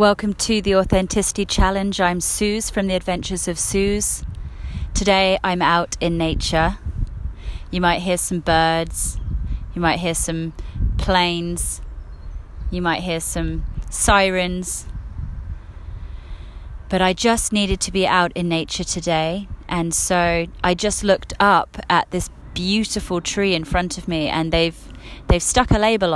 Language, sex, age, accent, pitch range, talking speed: English, female, 30-49, British, 145-195 Hz, 140 wpm